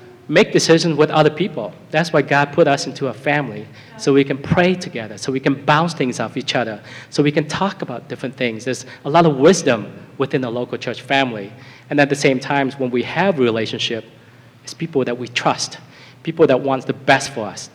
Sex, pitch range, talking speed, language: male, 125-150 Hz, 215 wpm, English